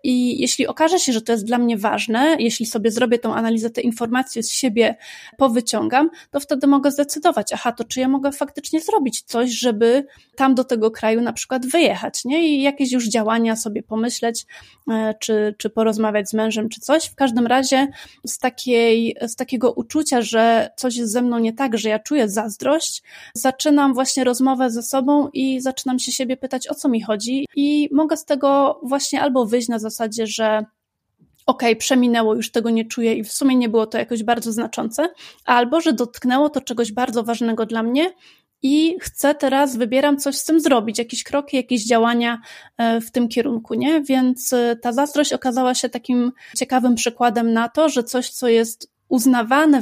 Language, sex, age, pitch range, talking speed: Polish, female, 30-49, 230-275 Hz, 185 wpm